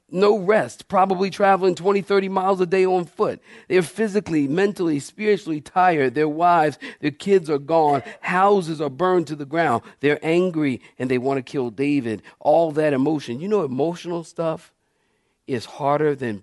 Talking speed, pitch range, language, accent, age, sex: 170 wpm, 135-185 Hz, English, American, 50-69, male